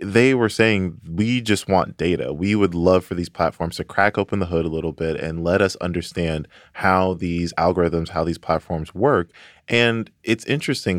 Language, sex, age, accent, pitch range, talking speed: English, male, 20-39, American, 85-120 Hz, 190 wpm